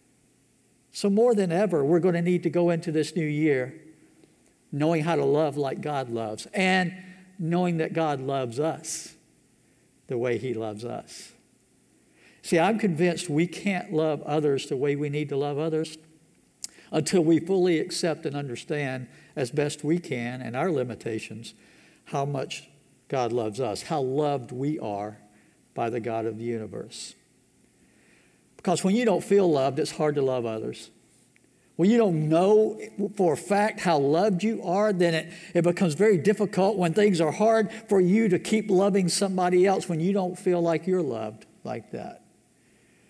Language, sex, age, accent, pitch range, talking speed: English, male, 60-79, American, 135-180 Hz, 170 wpm